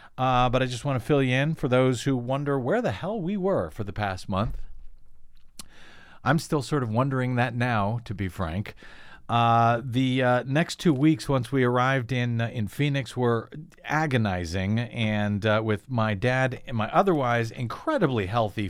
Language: English